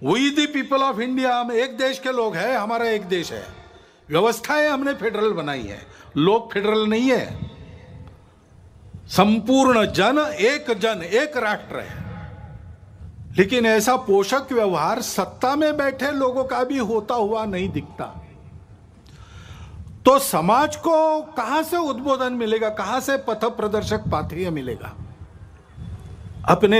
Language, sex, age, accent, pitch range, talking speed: Marathi, male, 50-69, native, 155-250 Hz, 110 wpm